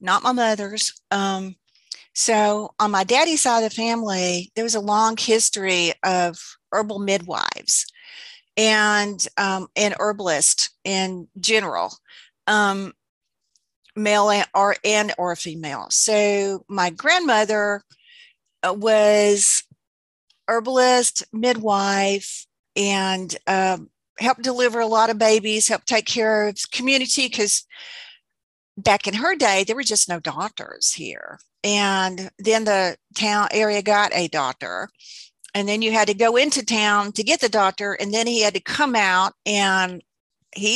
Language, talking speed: English, 135 wpm